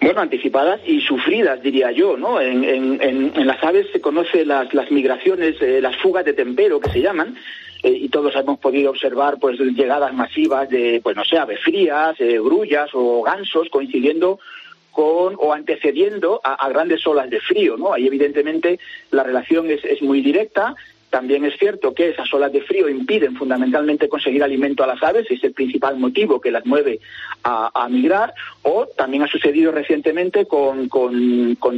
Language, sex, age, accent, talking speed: Spanish, male, 40-59, Spanish, 180 wpm